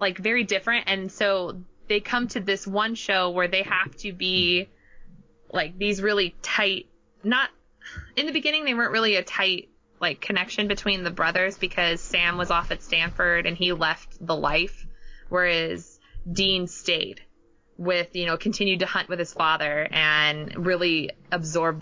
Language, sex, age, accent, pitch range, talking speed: English, female, 20-39, American, 175-220 Hz, 165 wpm